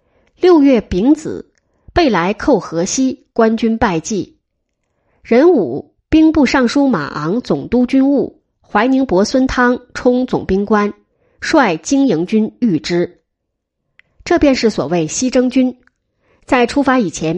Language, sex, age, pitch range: Chinese, female, 20-39, 180-270 Hz